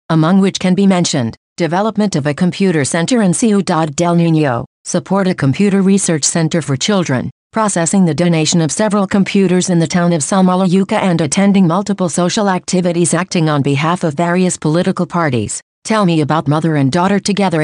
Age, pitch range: 50-69, 160-190 Hz